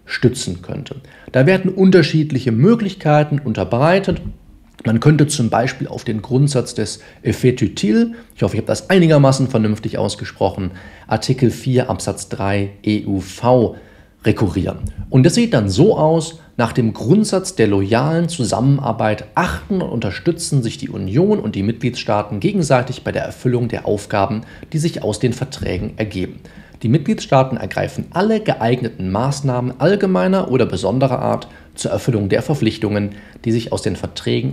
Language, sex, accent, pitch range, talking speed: German, male, German, 100-150 Hz, 145 wpm